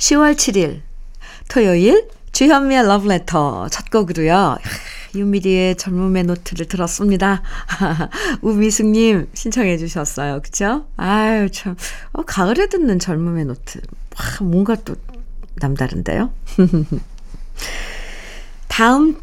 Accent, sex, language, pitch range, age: native, female, Korean, 160-230 Hz, 50-69